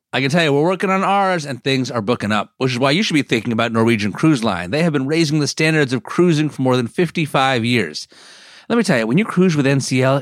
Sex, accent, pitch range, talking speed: male, American, 125-170 Hz, 270 wpm